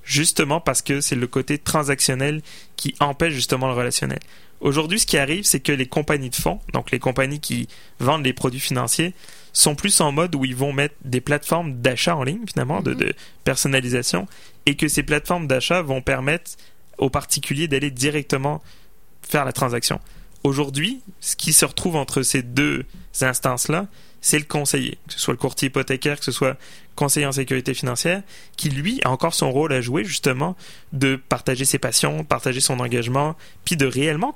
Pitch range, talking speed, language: 130-155 Hz, 185 wpm, French